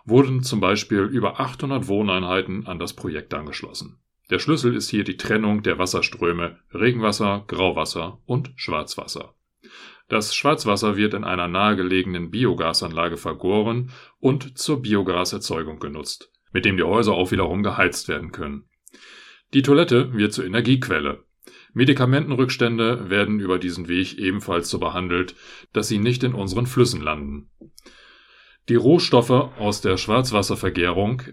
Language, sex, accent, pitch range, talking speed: German, male, German, 95-125 Hz, 130 wpm